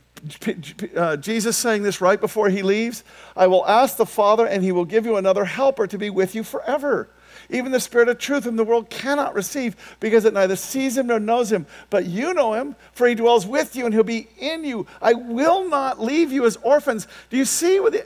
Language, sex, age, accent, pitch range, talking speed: English, male, 50-69, American, 185-280 Hz, 230 wpm